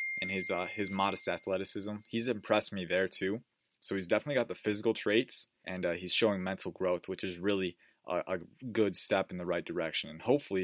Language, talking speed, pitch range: English, 210 wpm, 95-110 Hz